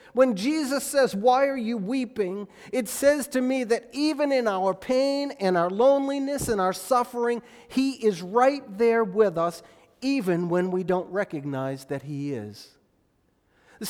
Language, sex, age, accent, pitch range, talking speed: English, male, 40-59, American, 210-270 Hz, 160 wpm